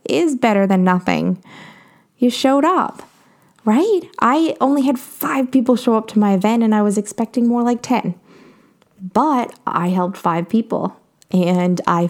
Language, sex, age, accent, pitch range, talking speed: English, female, 20-39, American, 180-235 Hz, 160 wpm